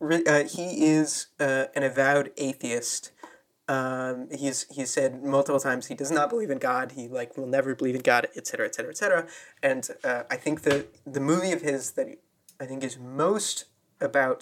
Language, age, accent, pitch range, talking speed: English, 20-39, American, 130-155 Hz, 185 wpm